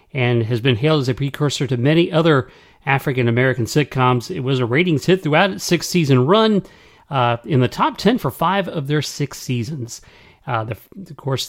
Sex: male